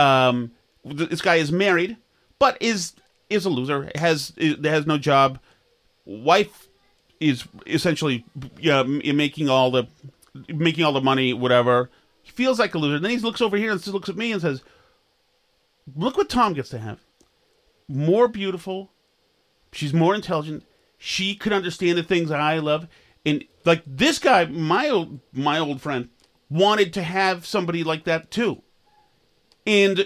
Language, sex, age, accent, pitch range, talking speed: English, male, 40-59, American, 150-210 Hz, 165 wpm